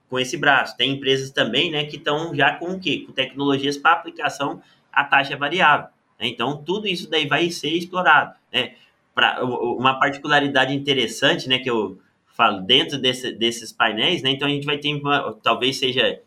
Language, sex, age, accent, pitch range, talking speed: Portuguese, male, 20-39, Brazilian, 125-150 Hz, 185 wpm